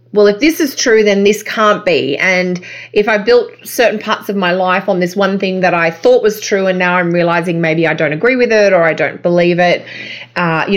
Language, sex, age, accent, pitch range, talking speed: English, female, 20-39, Australian, 155-190 Hz, 245 wpm